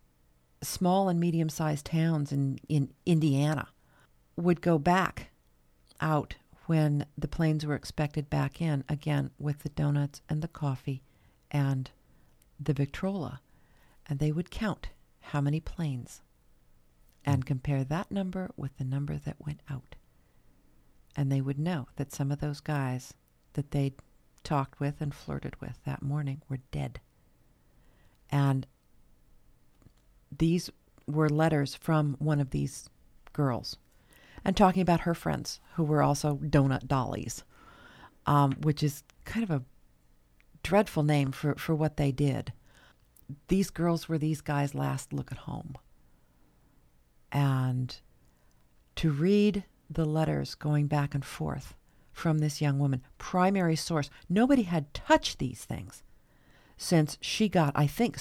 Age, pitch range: 50-69, 125-155 Hz